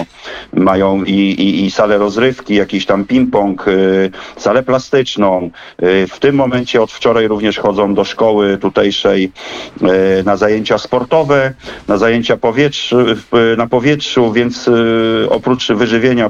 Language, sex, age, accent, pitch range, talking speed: Polish, male, 40-59, native, 100-115 Hz, 120 wpm